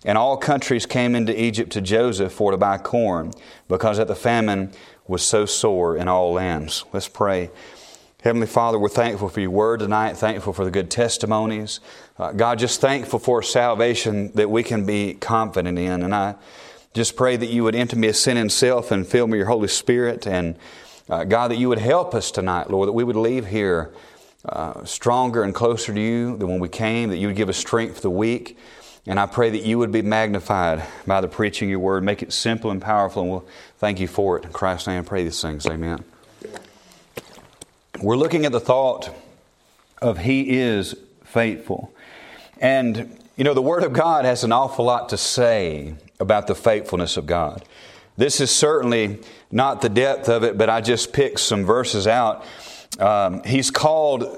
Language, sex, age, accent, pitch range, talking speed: English, male, 30-49, American, 100-120 Hz, 200 wpm